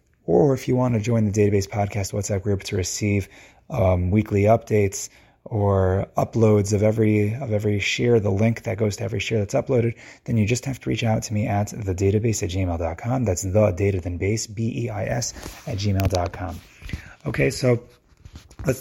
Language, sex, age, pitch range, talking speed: English, male, 30-49, 95-115 Hz, 175 wpm